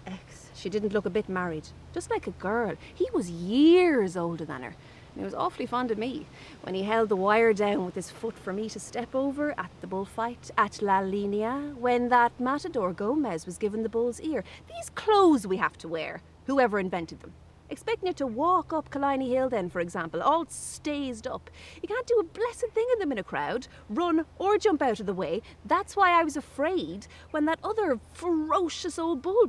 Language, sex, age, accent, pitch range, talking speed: English, female, 30-49, Irish, 185-290 Hz, 210 wpm